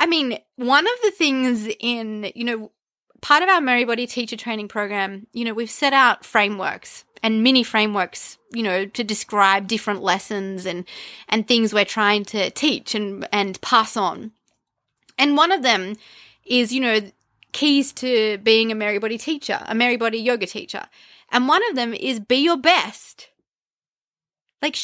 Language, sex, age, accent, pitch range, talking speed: English, female, 20-39, Australian, 215-255 Hz, 165 wpm